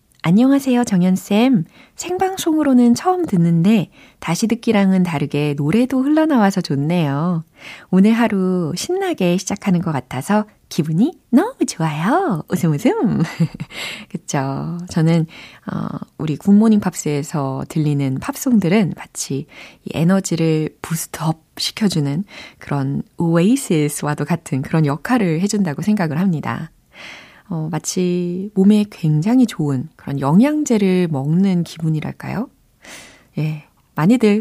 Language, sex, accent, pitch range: Korean, female, native, 155-220 Hz